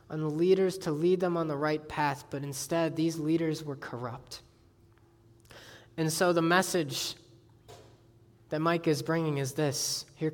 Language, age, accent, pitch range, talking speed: English, 20-39, American, 130-165 Hz, 155 wpm